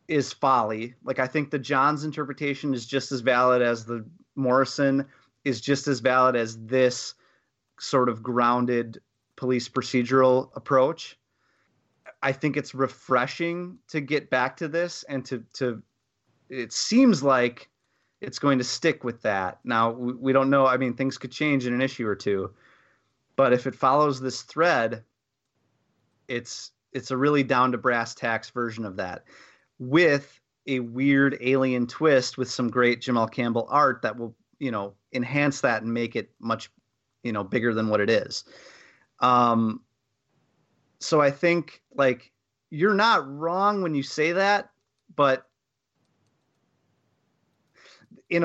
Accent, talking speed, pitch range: American, 150 wpm, 120-140 Hz